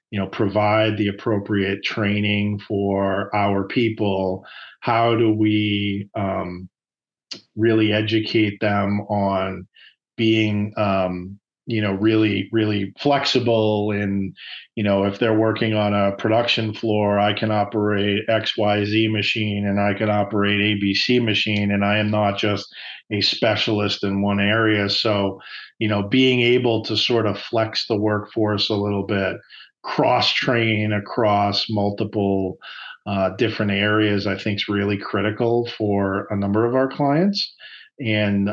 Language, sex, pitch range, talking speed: English, male, 100-110 Hz, 135 wpm